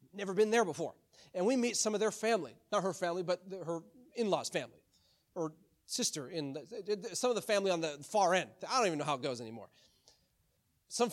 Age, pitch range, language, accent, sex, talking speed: 30-49, 155-195 Hz, English, American, male, 215 wpm